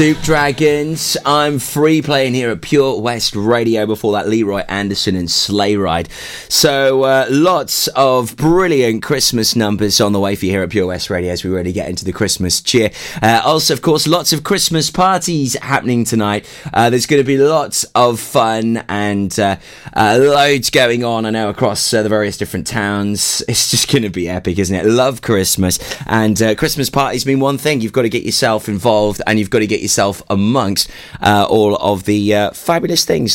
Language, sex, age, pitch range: English, male, 20-39, 100-135 Hz